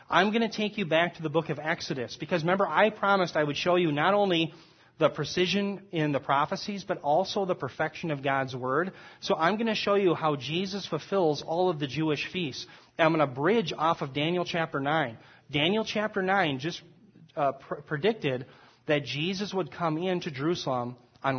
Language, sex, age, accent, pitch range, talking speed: English, male, 30-49, American, 140-175 Hz, 195 wpm